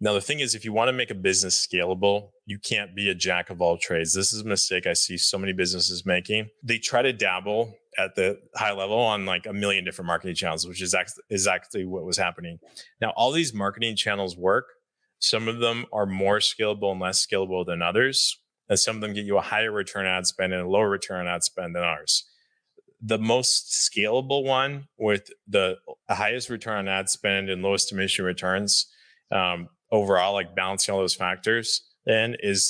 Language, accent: English, American